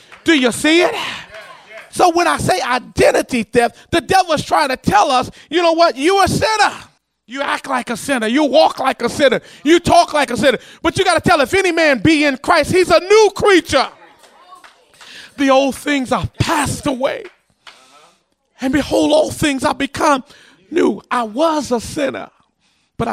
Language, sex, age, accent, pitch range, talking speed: English, male, 30-49, American, 265-345 Hz, 185 wpm